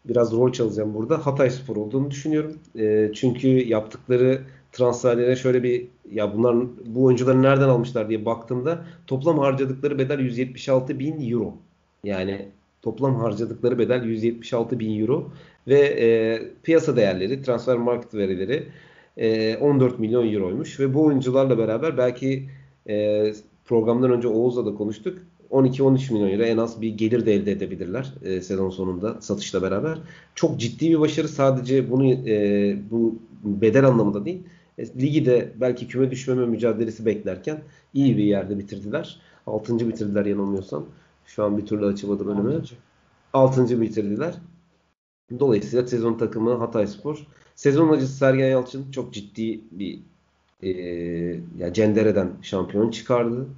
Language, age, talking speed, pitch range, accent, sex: Turkish, 40-59, 135 wpm, 110-135 Hz, native, male